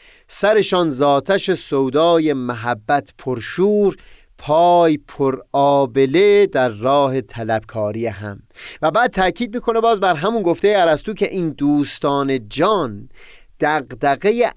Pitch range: 125-180 Hz